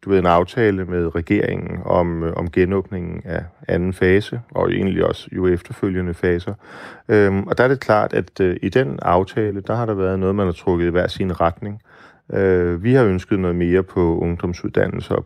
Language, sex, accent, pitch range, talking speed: Danish, male, native, 90-100 Hz, 195 wpm